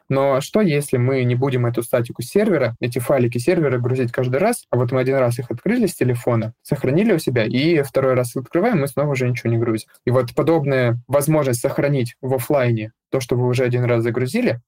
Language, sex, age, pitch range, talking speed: Russian, male, 20-39, 120-140 Hz, 215 wpm